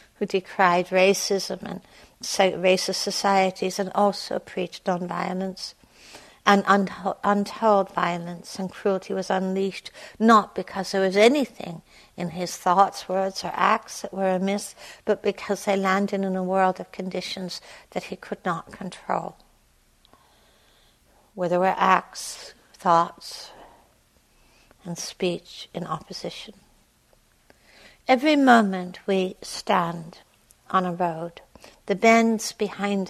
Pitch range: 185-220 Hz